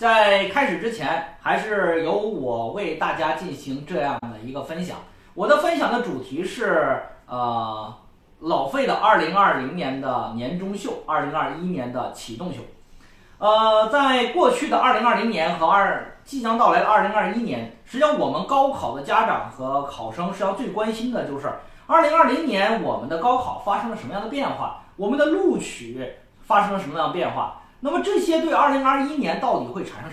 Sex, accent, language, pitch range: male, native, Chinese, 170-275 Hz